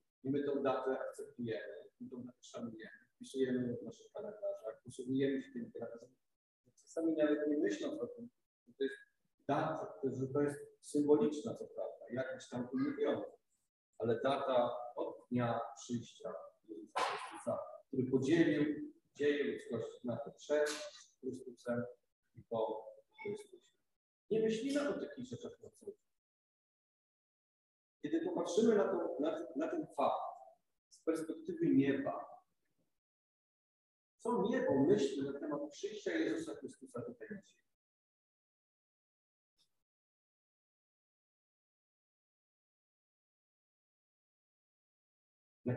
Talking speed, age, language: 105 wpm, 40-59, Polish